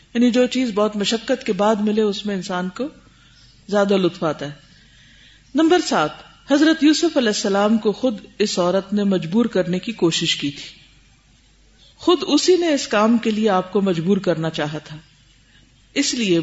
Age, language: 50-69, Urdu